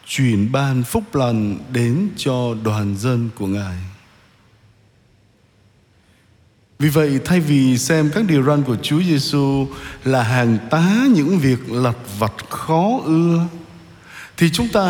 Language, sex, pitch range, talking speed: Vietnamese, male, 115-175 Hz, 135 wpm